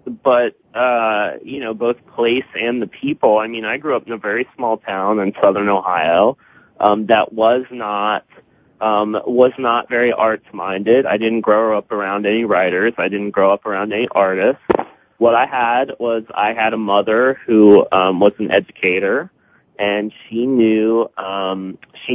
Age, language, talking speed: 30-49, English, 175 wpm